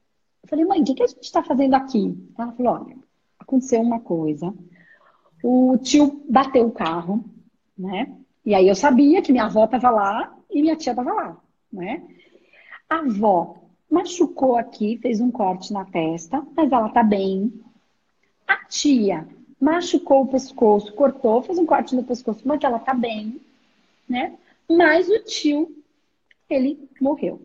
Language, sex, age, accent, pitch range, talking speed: Portuguese, female, 40-59, Brazilian, 215-290 Hz, 155 wpm